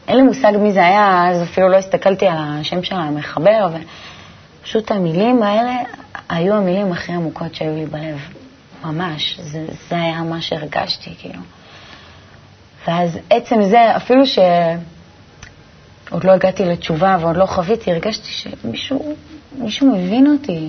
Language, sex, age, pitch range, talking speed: Hebrew, female, 30-49, 155-200 Hz, 135 wpm